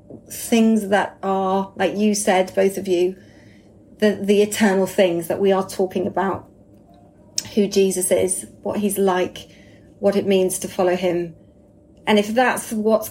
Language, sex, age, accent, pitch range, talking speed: English, female, 30-49, British, 180-215 Hz, 155 wpm